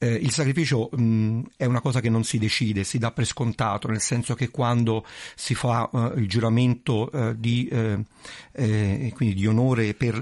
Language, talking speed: Italian, 180 wpm